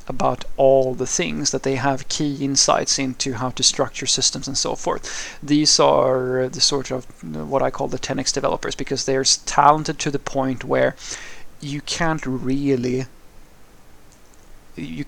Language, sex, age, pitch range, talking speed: English, male, 30-49, 130-145 Hz, 155 wpm